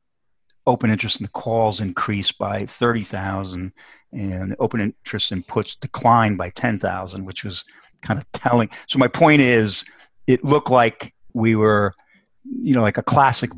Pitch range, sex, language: 95-115 Hz, male, English